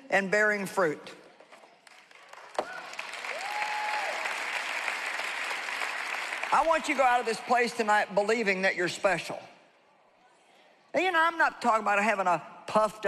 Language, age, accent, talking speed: English, 50-69, American, 125 wpm